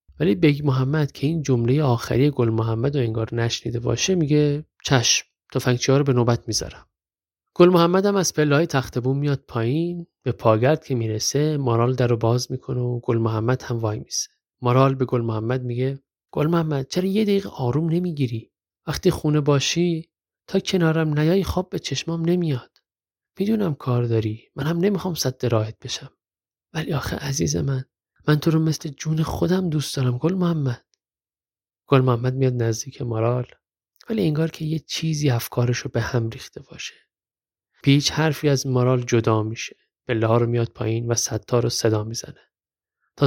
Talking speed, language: 160 wpm, Persian